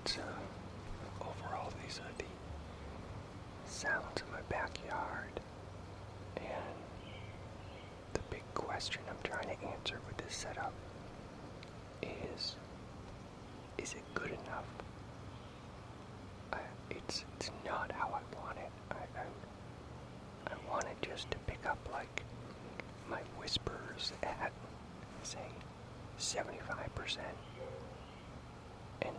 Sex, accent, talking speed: male, American, 105 wpm